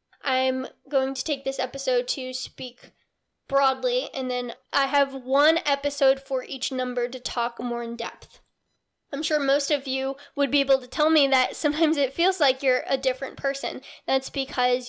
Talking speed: 180 wpm